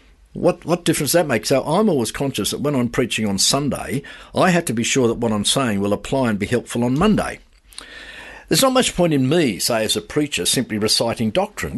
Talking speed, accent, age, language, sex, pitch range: 230 wpm, Australian, 50-69, English, male, 100-140 Hz